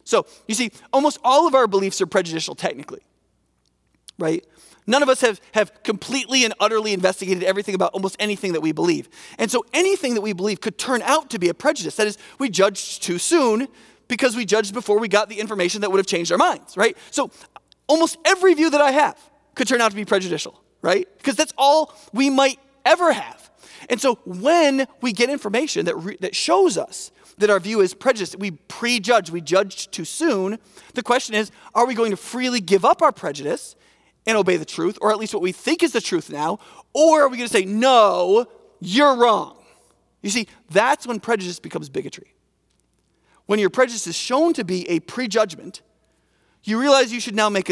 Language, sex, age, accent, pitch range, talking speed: English, male, 30-49, American, 195-270 Hz, 200 wpm